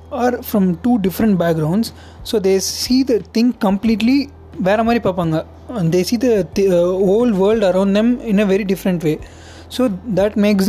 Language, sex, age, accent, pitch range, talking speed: Tamil, male, 20-39, native, 175-220 Hz, 165 wpm